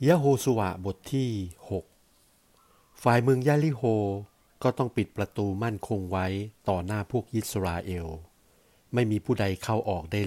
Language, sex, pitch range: Thai, male, 95-120 Hz